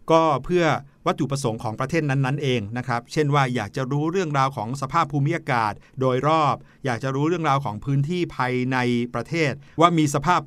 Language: Thai